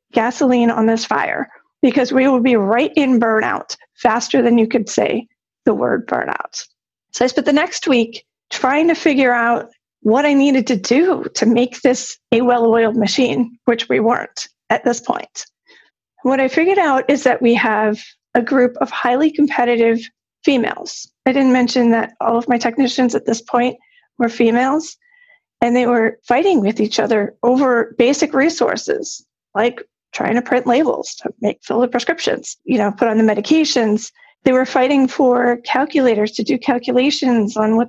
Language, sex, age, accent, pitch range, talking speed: English, female, 40-59, American, 235-280 Hz, 175 wpm